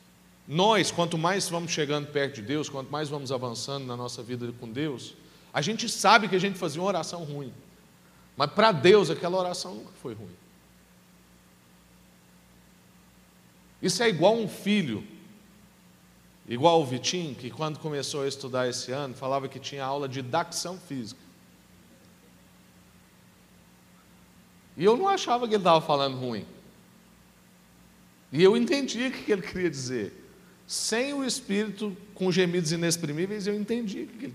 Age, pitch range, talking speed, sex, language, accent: 40-59, 110-185 Hz, 150 wpm, male, Portuguese, Brazilian